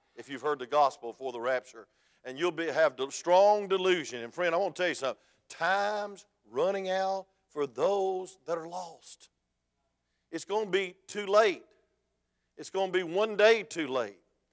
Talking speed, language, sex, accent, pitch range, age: 180 wpm, English, male, American, 140-195 Hz, 50-69